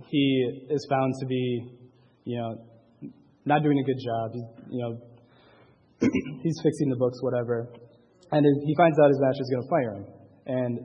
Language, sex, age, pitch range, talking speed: English, male, 20-39, 115-140 Hz, 160 wpm